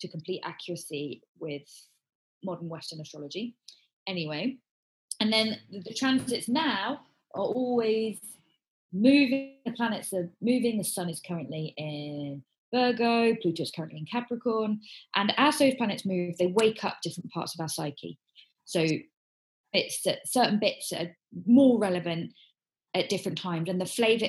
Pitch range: 170-220 Hz